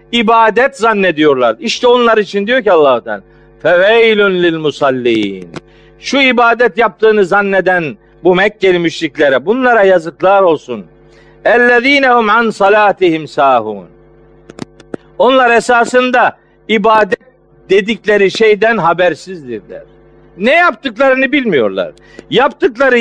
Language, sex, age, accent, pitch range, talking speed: Turkish, male, 50-69, native, 200-255 Hz, 90 wpm